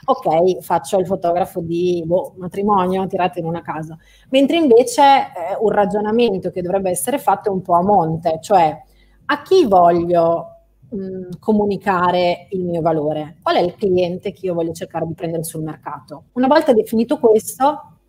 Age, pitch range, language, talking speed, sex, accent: 30-49, 165-195 Hz, Italian, 165 wpm, female, native